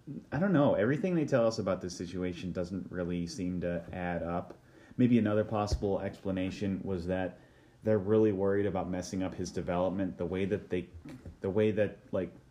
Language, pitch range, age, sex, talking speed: English, 90-115 Hz, 30-49, male, 180 wpm